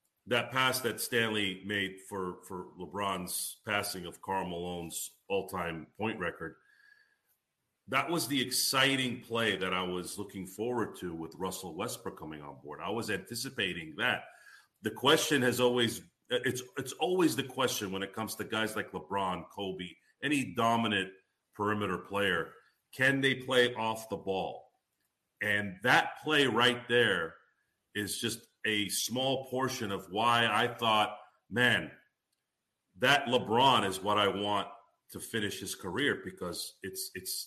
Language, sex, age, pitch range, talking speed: English, male, 40-59, 100-130 Hz, 150 wpm